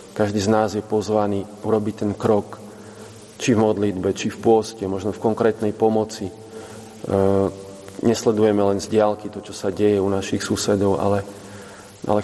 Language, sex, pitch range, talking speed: Slovak, male, 100-110 Hz, 155 wpm